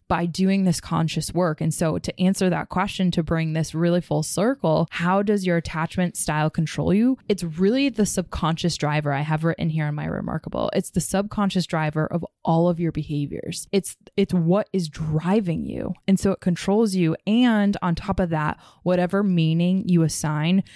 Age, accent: 20-39, American